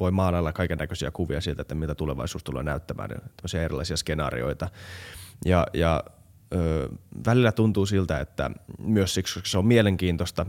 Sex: male